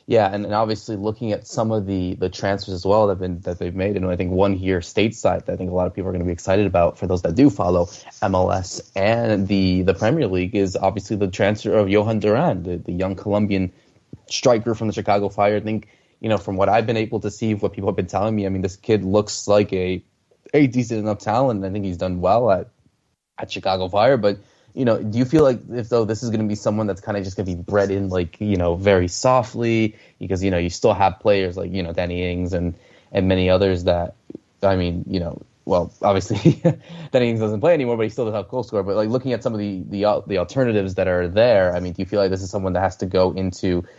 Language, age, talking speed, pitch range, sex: English, 20-39, 260 wpm, 90-110 Hz, male